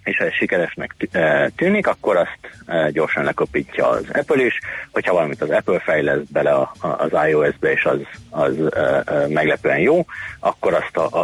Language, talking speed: Hungarian, 150 wpm